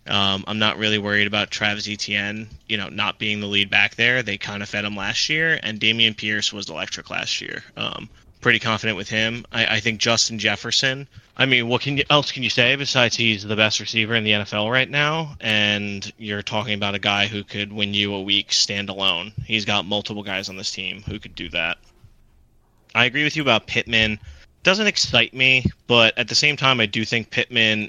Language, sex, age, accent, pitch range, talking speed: English, male, 20-39, American, 105-120 Hz, 215 wpm